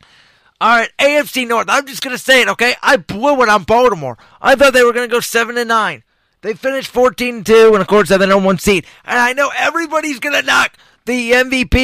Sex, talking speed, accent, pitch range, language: male, 235 wpm, American, 175-245 Hz, English